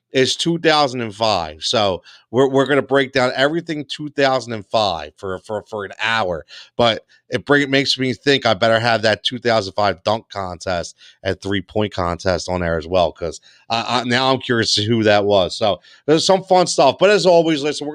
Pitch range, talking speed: 120-145 Hz, 190 wpm